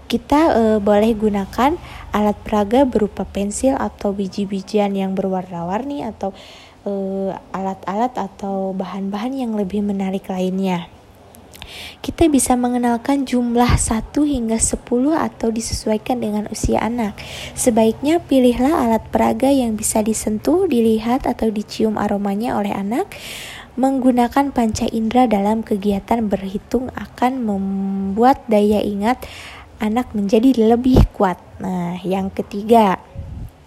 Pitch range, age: 205-245 Hz, 20-39